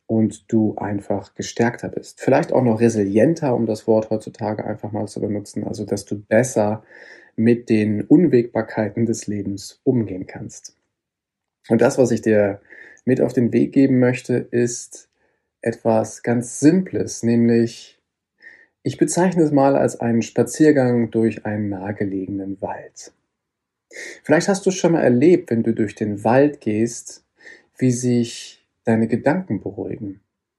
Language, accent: German, German